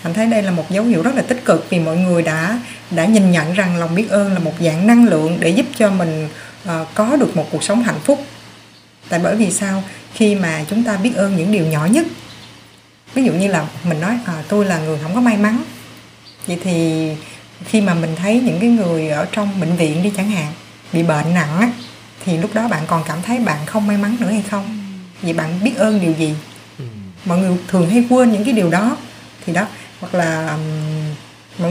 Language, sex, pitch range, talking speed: Vietnamese, female, 165-215 Hz, 230 wpm